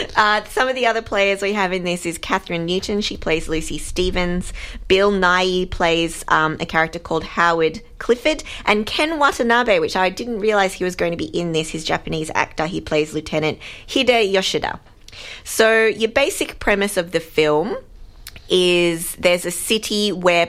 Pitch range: 160-210 Hz